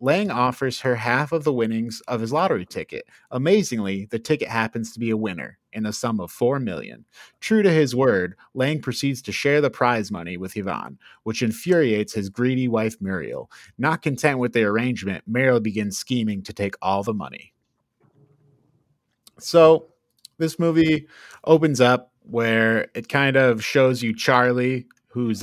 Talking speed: 165 wpm